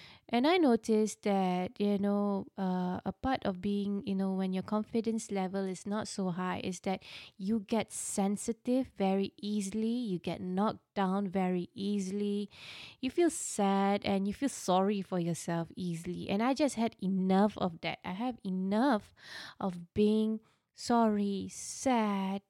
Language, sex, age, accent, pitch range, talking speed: English, female, 20-39, Malaysian, 190-245 Hz, 155 wpm